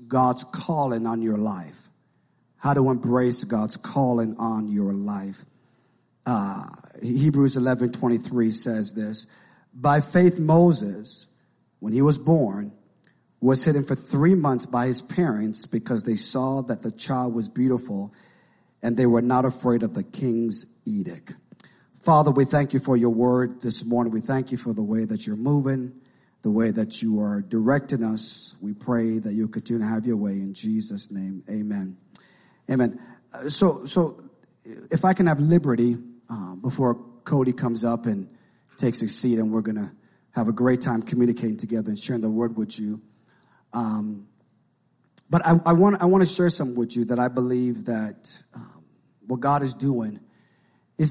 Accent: American